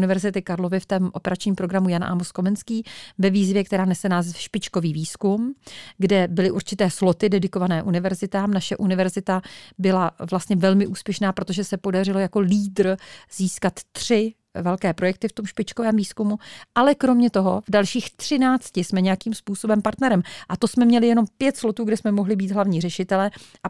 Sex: female